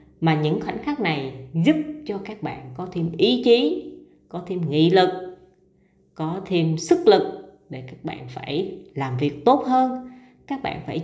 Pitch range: 150-210 Hz